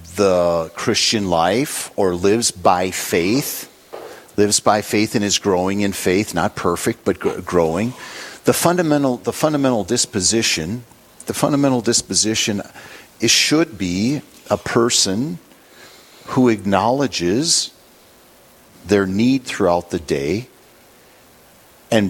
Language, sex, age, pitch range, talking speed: English, male, 50-69, 95-120 Hz, 110 wpm